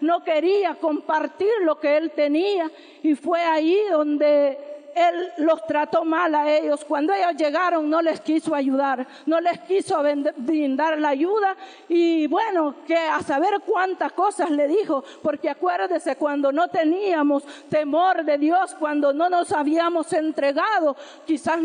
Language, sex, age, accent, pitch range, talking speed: Spanish, female, 50-69, American, 295-340 Hz, 145 wpm